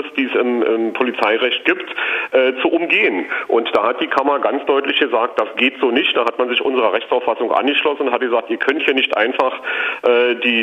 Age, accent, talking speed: 40-59, German, 215 wpm